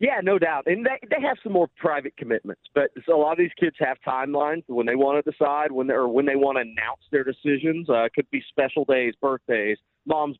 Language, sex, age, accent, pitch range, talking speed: English, male, 40-59, American, 125-160 Hz, 240 wpm